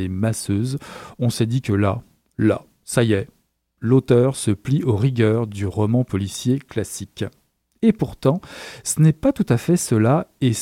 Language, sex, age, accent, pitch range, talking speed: French, male, 40-59, French, 120-160 Hz, 165 wpm